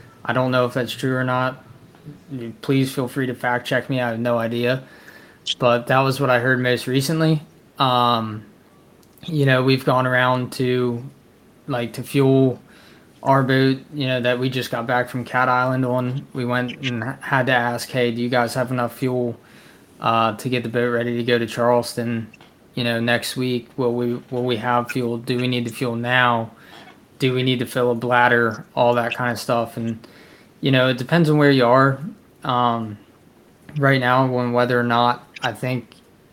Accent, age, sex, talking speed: American, 20-39, male, 195 wpm